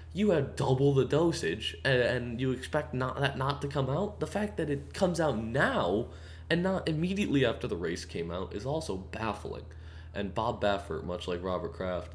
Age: 20-39